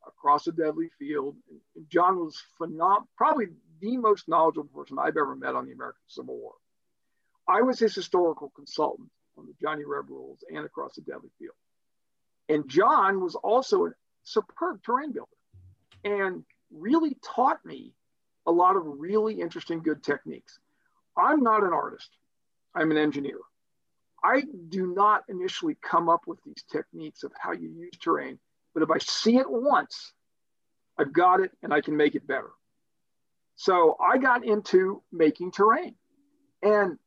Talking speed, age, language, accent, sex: 155 wpm, 50-69, English, American, male